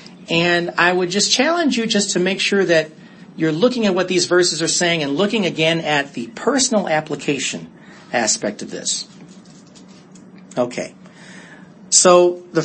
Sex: male